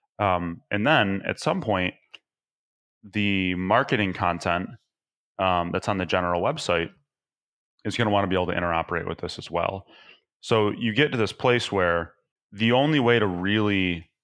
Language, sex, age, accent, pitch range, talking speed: English, male, 30-49, American, 85-105 Hz, 170 wpm